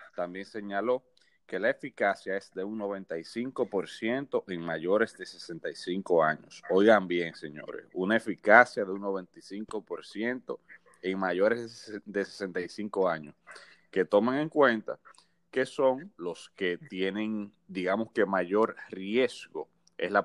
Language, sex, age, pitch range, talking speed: Spanish, male, 30-49, 90-110 Hz, 125 wpm